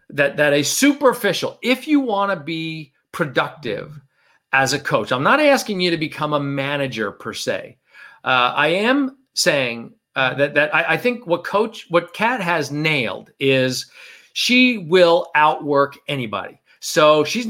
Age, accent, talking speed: 50-69, American, 160 wpm